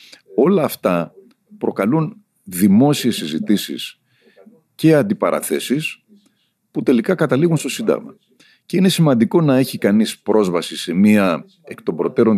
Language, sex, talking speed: Greek, male, 115 wpm